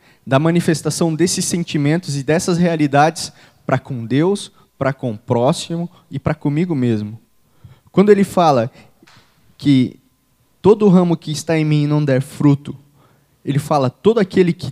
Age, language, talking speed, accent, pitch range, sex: 20-39, English, 145 wpm, Brazilian, 135-180 Hz, male